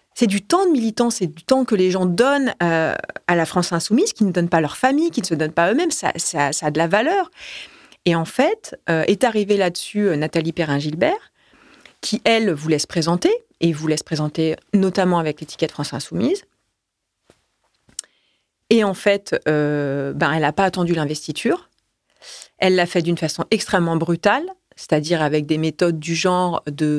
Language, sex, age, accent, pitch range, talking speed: French, female, 30-49, French, 160-205 Hz, 185 wpm